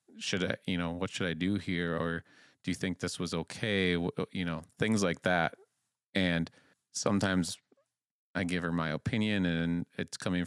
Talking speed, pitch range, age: 180 wpm, 85-95 Hz, 30-49